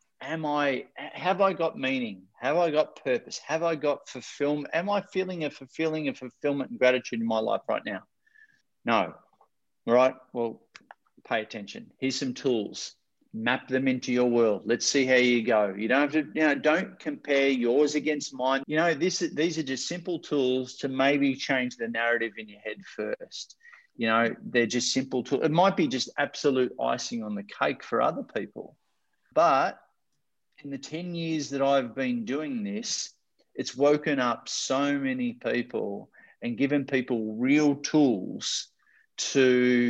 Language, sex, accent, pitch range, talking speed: English, male, Australian, 125-155 Hz, 170 wpm